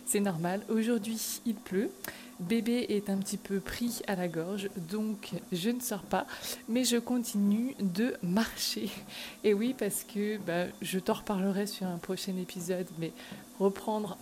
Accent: French